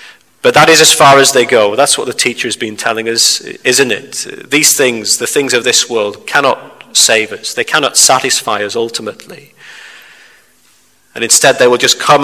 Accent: British